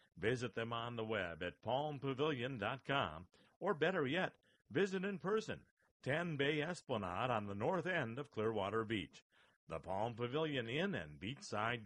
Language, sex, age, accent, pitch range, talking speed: English, male, 50-69, American, 110-155 Hz, 145 wpm